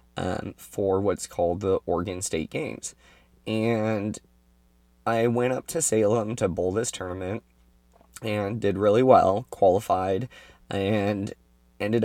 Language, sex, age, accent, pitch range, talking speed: English, male, 20-39, American, 95-110 Hz, 125 wpm